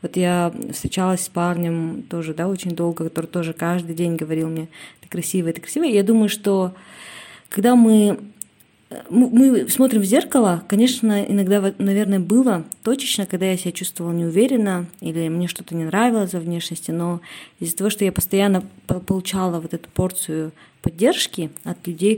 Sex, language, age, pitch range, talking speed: female, Russian, 20-39, 170-205 Hz, 155 wpm